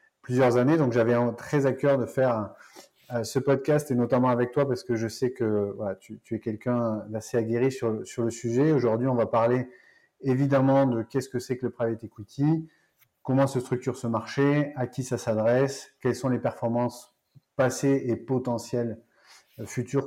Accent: French